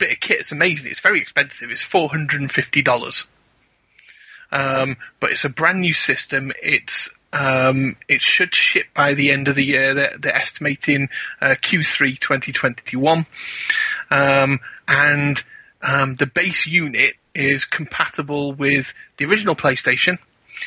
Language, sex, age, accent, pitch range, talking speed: English, male, 30-49, British, 135-160 Hz, 135 wpm